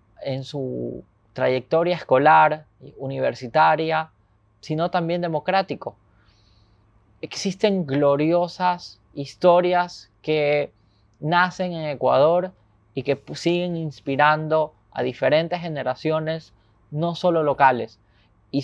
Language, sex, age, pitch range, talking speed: Spanish, male, 20-39, 120-175 Hz, 85 wpm